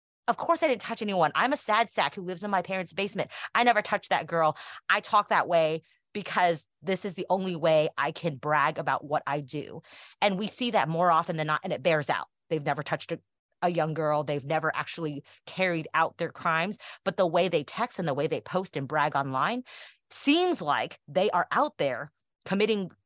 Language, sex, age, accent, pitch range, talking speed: English, female, 30-49, American, 145-195 Hz, 220 wpm